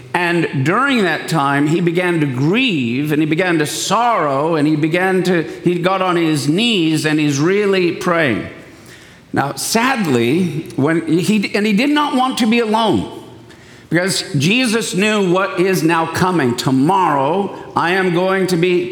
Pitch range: 145-200 Hz